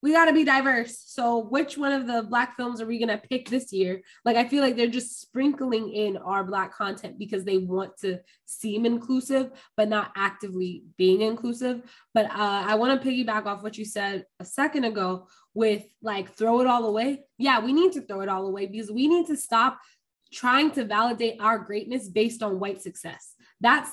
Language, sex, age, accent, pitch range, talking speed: English, female, 20-39, American, 210-270 Hz, 210 wpm